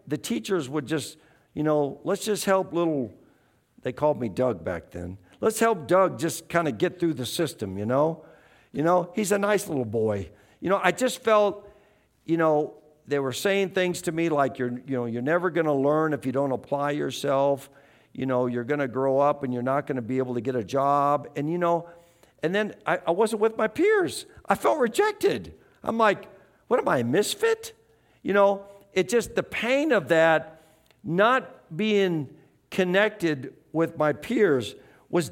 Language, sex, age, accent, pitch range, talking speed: English, male, 50-69, American, 125-185 Hz, 200 wpm